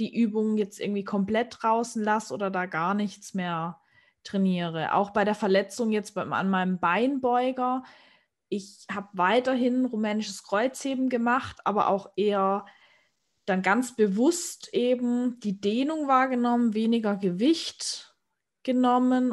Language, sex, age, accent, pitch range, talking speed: German, female, 20-39, German, 195-240 Hz, 125 wpm